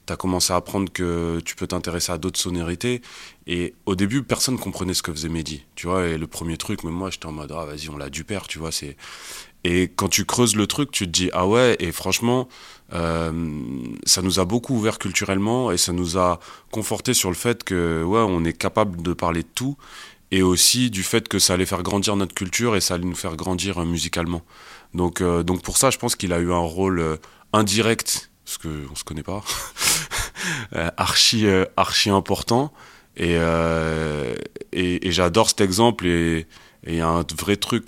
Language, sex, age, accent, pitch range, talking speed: French, male, 20-39, French, 85-100 Hz, 210 wpm